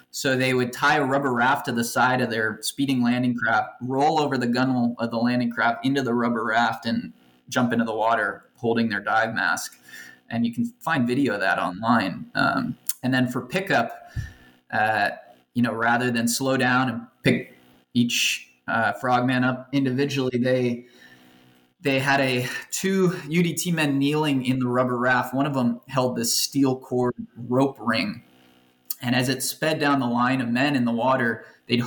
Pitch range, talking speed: 115-135 Hz, 185 wpm